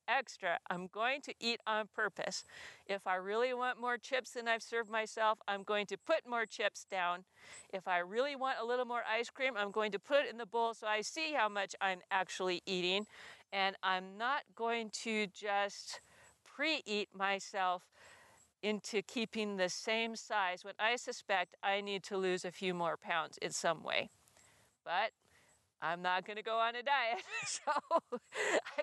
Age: 50-69